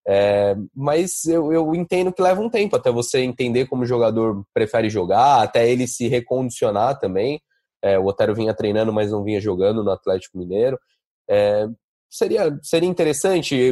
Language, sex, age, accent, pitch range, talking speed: Portuguese, male, 20-39, Brazilian, 115-170 Hz, 165 wpm